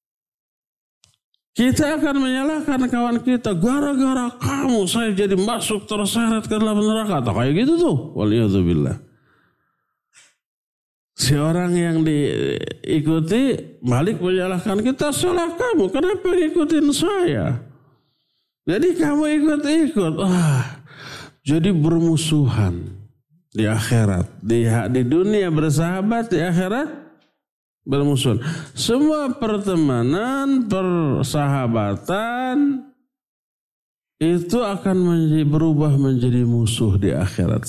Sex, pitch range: male, 150-245 Hz